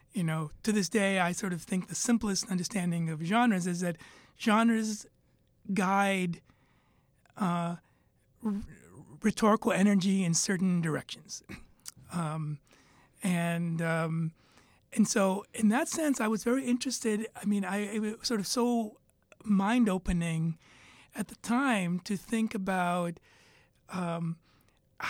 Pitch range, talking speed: 170-215 Hz, 130 wpm